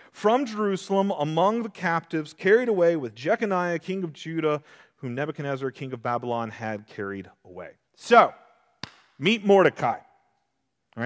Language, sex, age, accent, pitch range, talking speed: English, male, 40-59, American, 120-180 Hz, 130 wpm